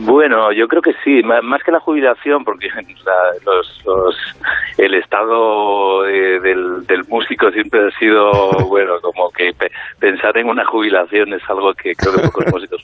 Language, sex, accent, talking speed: Spanish, male, Spanish, 160 wpm